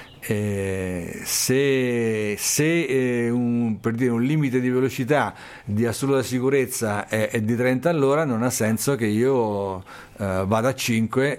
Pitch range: 105-130 Hz